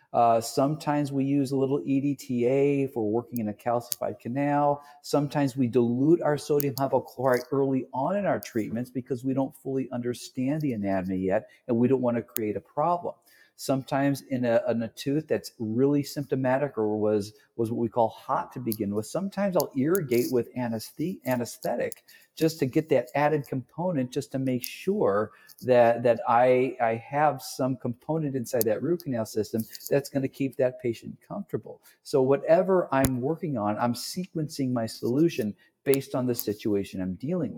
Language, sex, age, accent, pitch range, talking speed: English, male, 50-69, American, 115-140 Hz, 170 wpm